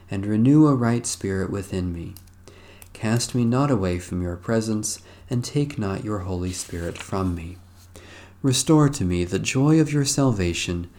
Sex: male